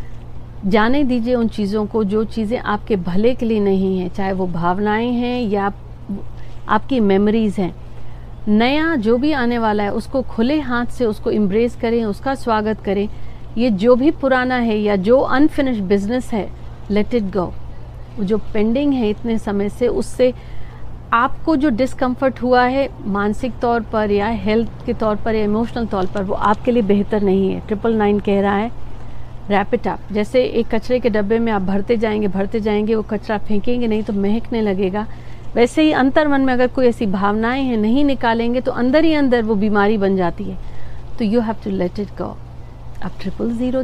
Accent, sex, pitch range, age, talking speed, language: native, female, 205-250 Hz, 50-69, 185 wpm, Hindi